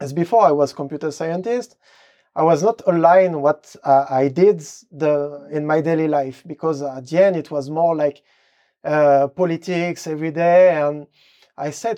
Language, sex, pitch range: French, male, 145-180 Hz